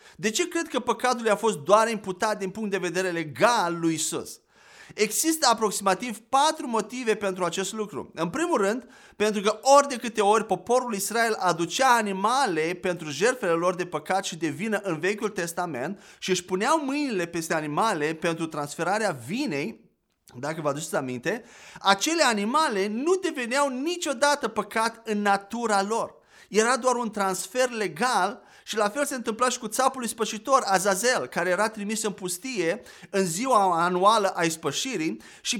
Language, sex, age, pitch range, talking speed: Romanian, male, 30-49, 190-245 Hz, 165 wpm